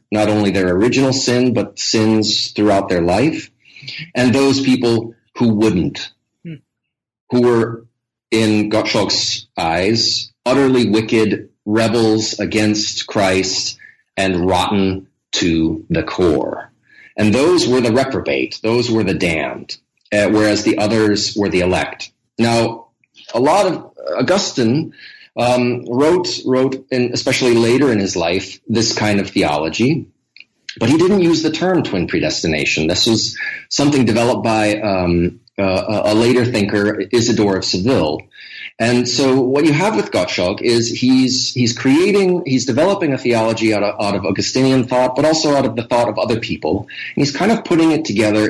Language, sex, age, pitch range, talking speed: English, male, 30-49, 105-130 Hz, 150 wpm